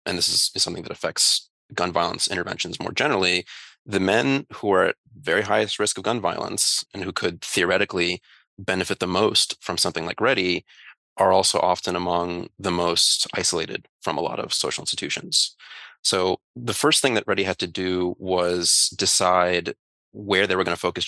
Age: 30-49